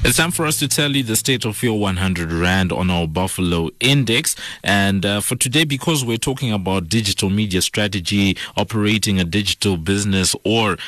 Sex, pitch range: male, 90-115 Hz